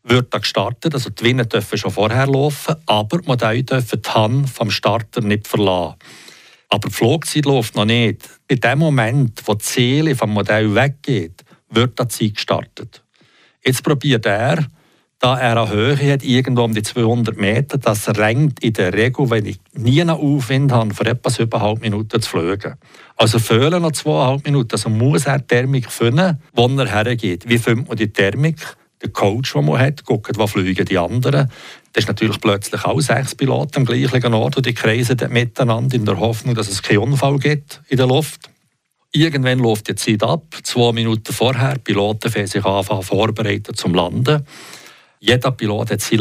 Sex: male